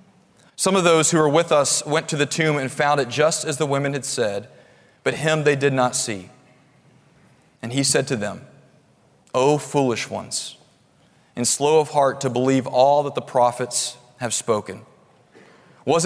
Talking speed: 175 wpm